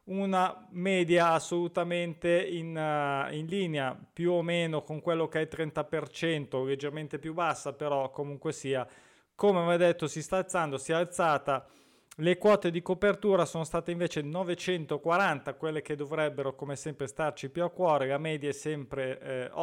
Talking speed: 160 wpm